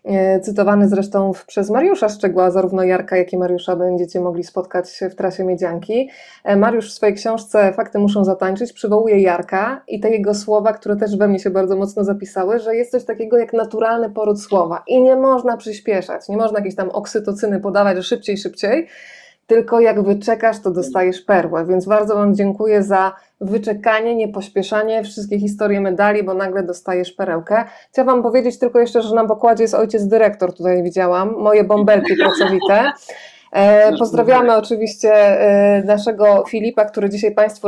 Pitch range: 195-230 Hz